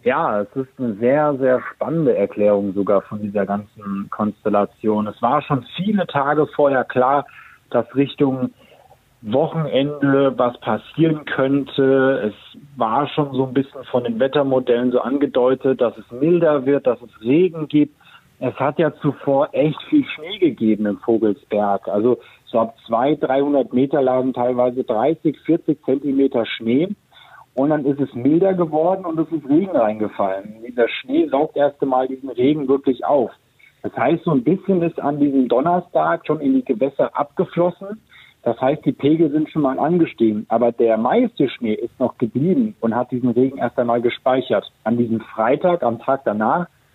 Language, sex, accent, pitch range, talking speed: German, male, German, 115-150 Hz, 165 wpm